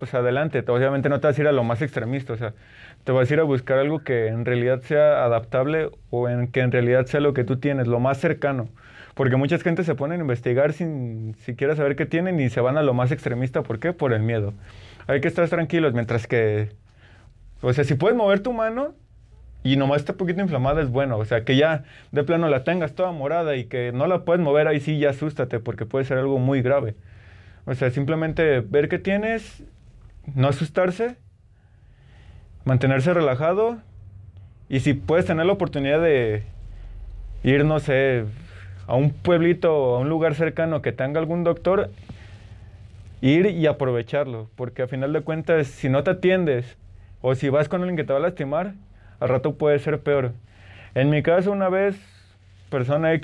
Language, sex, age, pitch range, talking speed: Spanish, male, 30-49, 115-160 Hz, 195 wpm